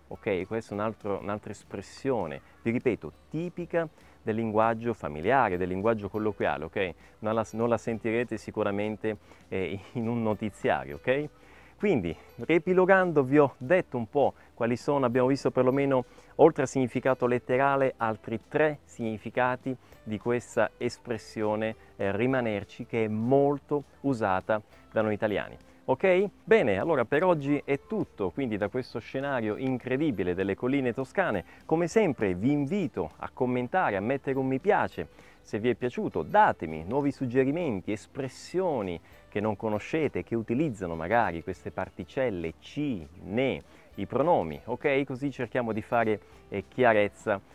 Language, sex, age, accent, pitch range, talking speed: Italian, male, 30-49, native, 105-135 Hz, 135 wpm